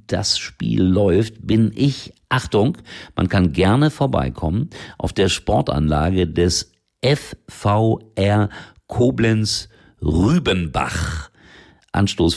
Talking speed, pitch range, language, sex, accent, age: 85 wpm, 80-105 Hz, German, male, German, 50-69